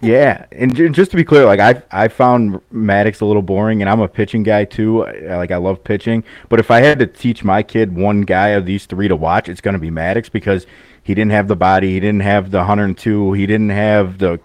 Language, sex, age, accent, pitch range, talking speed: English, male, 30-49, American, 95-110 Hz, 245 wpm